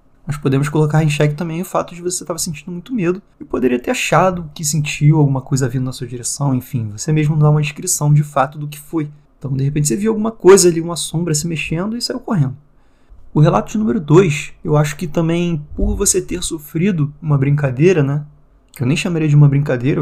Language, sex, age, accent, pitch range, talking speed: Portuguese, male, 20-39, Brazilian, 140-175 Hz, 225 wpm